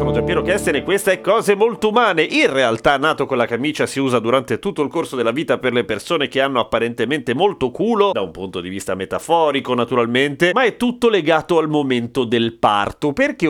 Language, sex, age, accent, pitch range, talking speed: Italian, male, 30-49, native, 125-175 Hz, 210 wpm